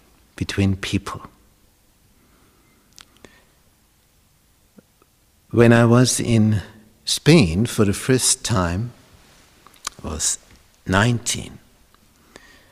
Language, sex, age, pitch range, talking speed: English, male, 60-79, 95-120 Hz, 65 wpm